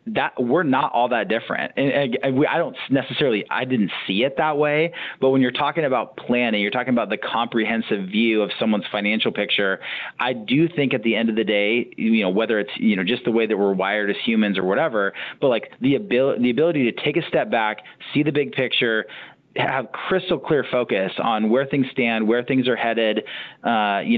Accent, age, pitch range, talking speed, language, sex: American, 30-49, 110-135 Hz, 220 wpm, English, male